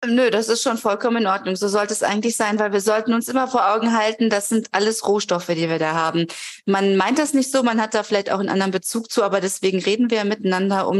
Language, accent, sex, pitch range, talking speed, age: German, German, female, 185-230 Hz, 260 wpm, 30-49